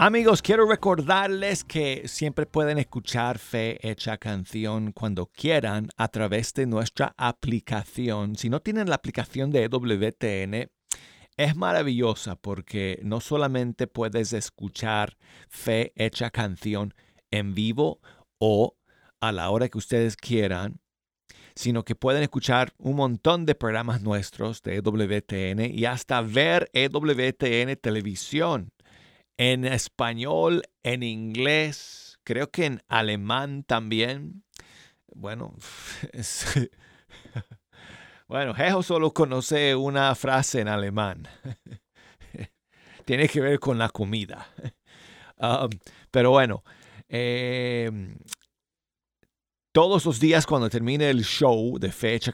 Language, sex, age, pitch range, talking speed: Spanish, male, 50-69, 110-135 Hz, 110 wpm